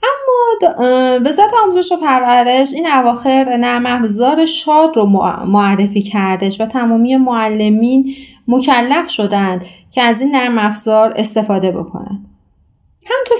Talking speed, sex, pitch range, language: 120 wpm, female, 210-275 Hz, Persian